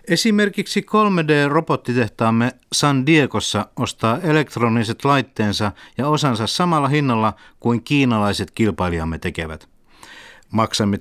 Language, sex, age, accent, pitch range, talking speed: Finnish, male, 50-69, native, 105-145 Hz, 85 wpm